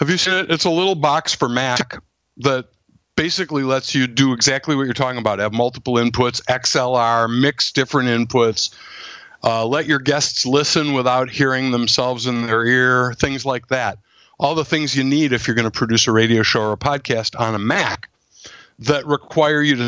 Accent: American